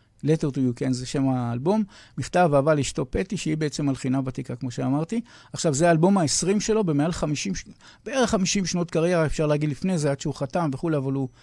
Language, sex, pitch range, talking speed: Hebrew, male, 130-170 Hz, 200 wpm